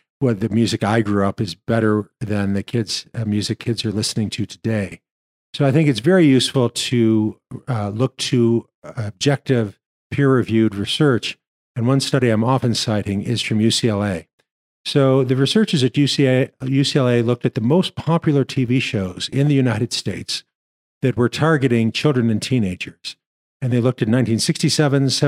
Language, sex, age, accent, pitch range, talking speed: English, male, 50-69, American, 110-135 Hz, 160 wpm